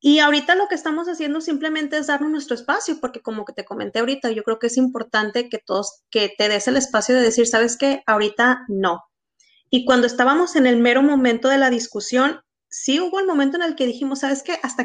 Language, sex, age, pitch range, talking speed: Spanish, female, 30-49, 230-295 Hz, 225 wpm